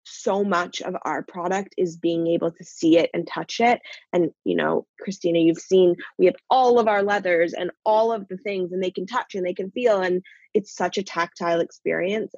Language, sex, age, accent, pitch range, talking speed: English, female, 20-39, American, 175-205 Hz, 220 wpm